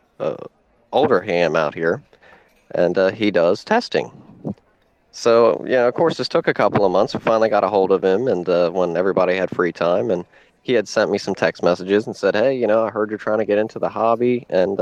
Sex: male